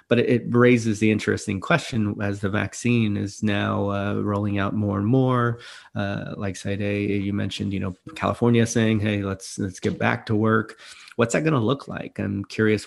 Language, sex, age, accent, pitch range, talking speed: English, male, 30-49, American, 100-110 Hz, 190 wpm